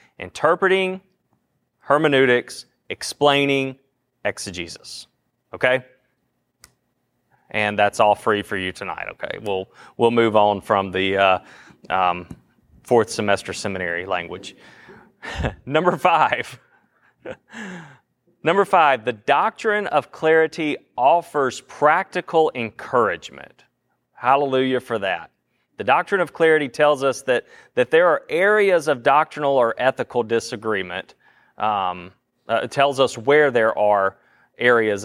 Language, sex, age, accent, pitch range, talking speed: English, male, 30-49, American, 105-140 Hz, 110 wpm